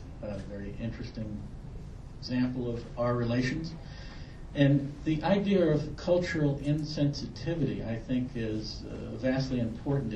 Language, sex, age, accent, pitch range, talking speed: English, male, 60-79, American, 115-140 Hz, 110 wpm